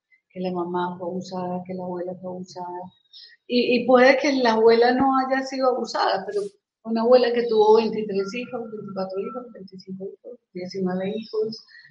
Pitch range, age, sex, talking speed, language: 190-235 Hz, 40-59, female, 165 wpm, Spanish